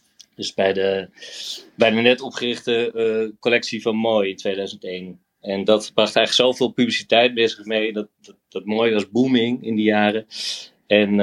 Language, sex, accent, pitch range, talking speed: Dutch, male, Dutch, 100-125 Hz, 165 wpm